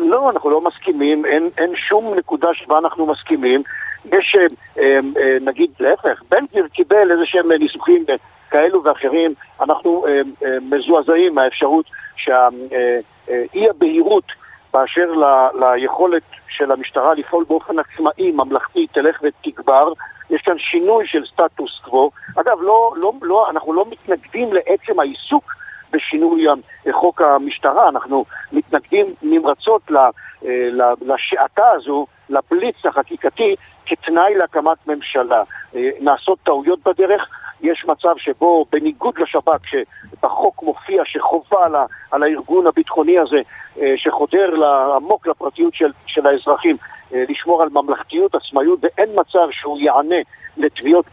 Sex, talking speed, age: male, 120 wpm, 50-69